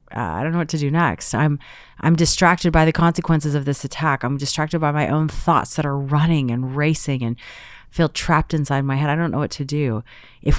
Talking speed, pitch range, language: 230 wpm, 135-170 Hz, English